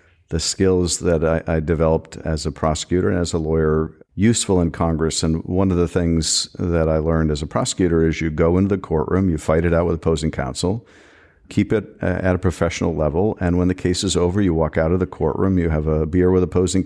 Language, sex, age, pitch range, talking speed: English, male, 50-69, 80-90 Hz, 230 wpm